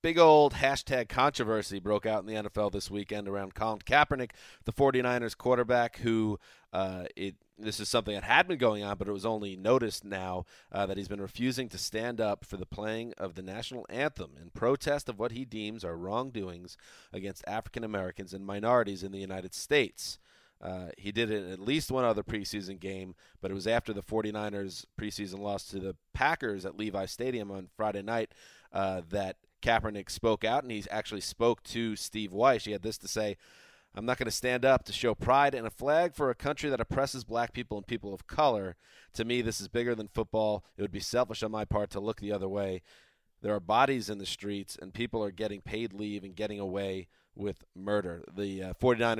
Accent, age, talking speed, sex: American, 30-49, 210 wpm, male